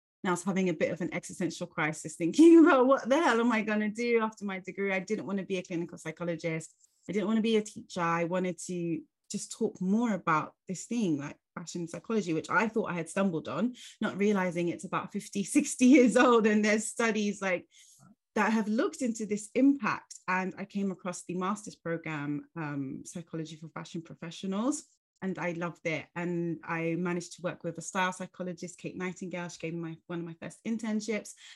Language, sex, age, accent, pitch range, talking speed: English, female, 30-49, British, 170-210 Hz, 205 wpm